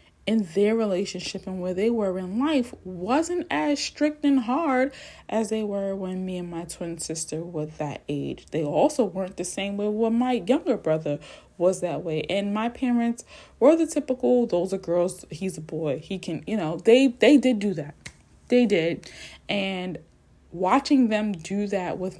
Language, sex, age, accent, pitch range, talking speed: English, female, 20-39, American, 170-220 Hz, 185 wpm